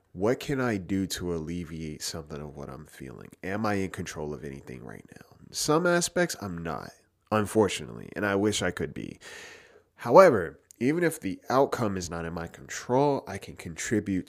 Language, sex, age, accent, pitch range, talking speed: English, male, 30-49, American, 90-110 Hz, 180 wpm